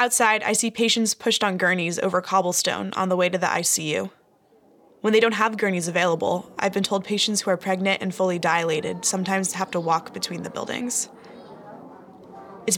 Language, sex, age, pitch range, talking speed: English, female, 20-39, 175-220 Hz, 185 wpm